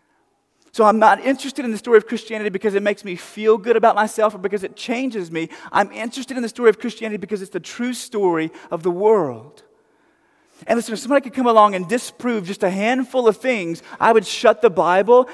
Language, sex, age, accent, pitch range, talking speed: English, male, 30-49, American, 190-235 Hz, 220 wpm